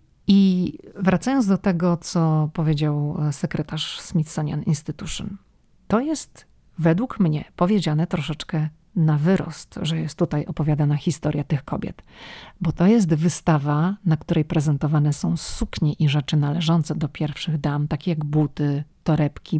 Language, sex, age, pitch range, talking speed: Polish, female, 40-59, 155-195 Hz, 130 wpm